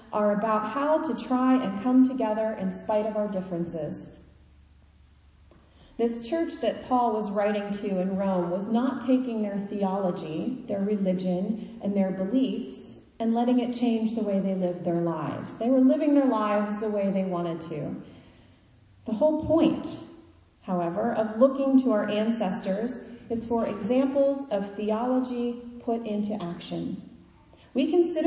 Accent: American